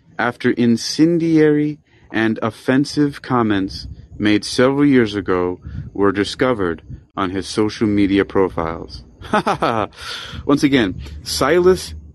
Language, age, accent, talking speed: English, 30-49, American, 100 wpm